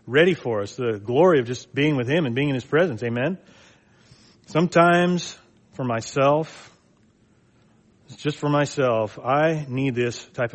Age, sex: 40-59, male